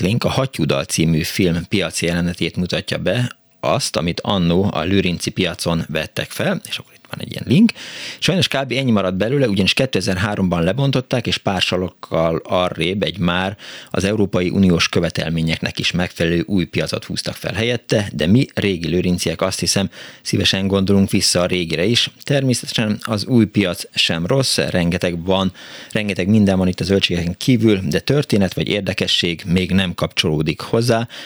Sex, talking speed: male, 160 wpm